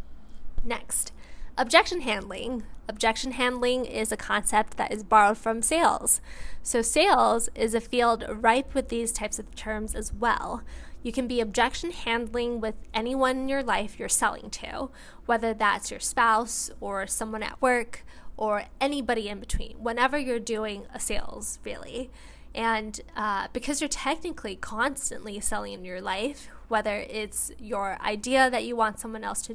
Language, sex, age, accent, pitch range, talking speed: English, female, 10-29, American, 215-250 Hz, 155 wpm